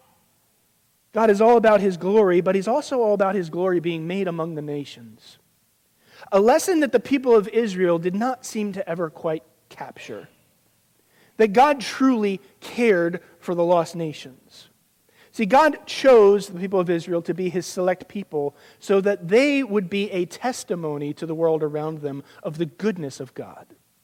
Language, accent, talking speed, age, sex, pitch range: English, American, 170 wpm, 40-59, male, 160-215 Hz